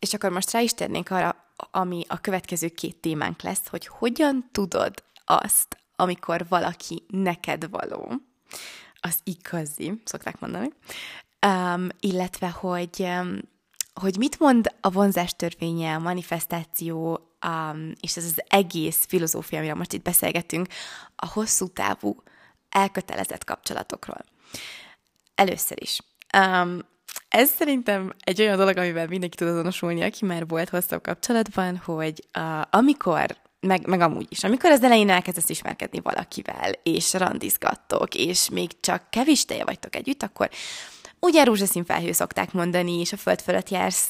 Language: Hungarian